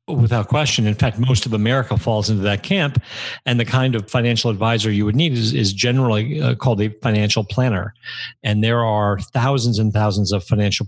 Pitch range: 105-125 Hz